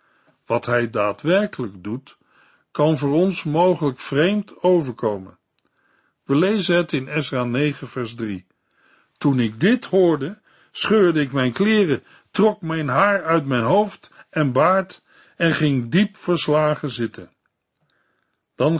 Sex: male